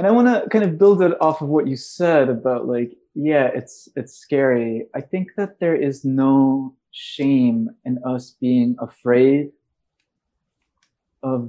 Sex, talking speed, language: male, 160 wpm, English